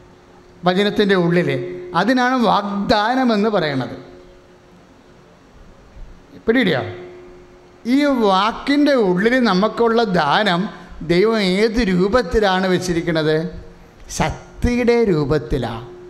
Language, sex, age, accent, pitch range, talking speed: English, male, 60-79, Indian, 150-220 Hz, 70 wpm